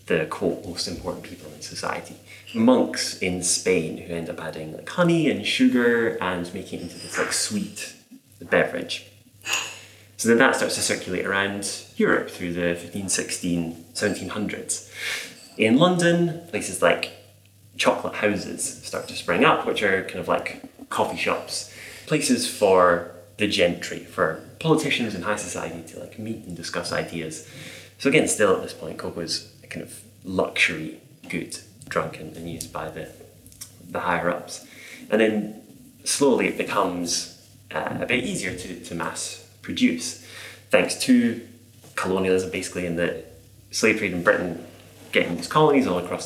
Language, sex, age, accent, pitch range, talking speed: English, male, 20-39, British, 85-110 Hz, 155 wpm